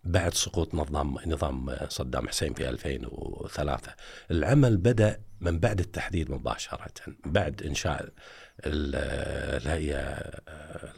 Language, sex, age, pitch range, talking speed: Arabic, male, 50-69, 80-105 Hz, 95 wpm